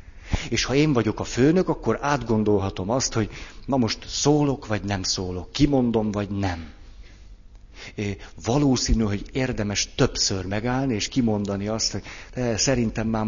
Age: 50-69